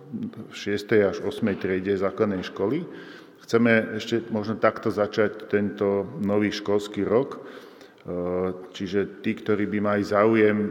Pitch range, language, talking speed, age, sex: 95-110 Hz, Slovak, 125 wpm, 40-59, male